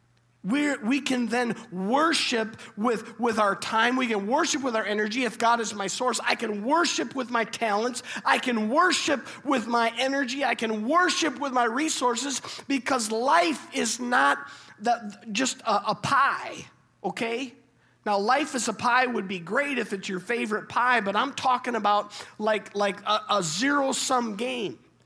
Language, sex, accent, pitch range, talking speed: English, male, American, 195-255 Hz, 170 wpm